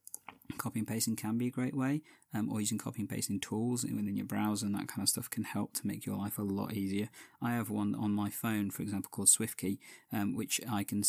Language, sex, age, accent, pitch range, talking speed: English, male, 20-39, British, 100-120 Hz, 250 wpm